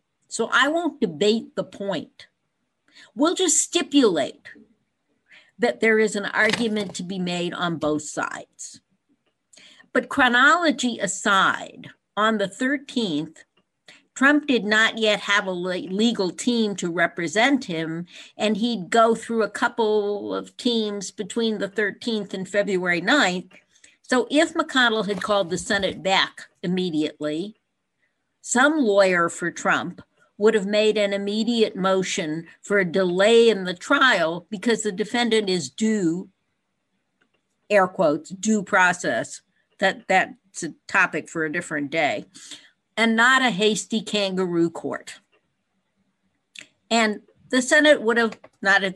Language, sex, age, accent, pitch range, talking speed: English, female, 60-79, American, 185-230 Hz, 125 wpm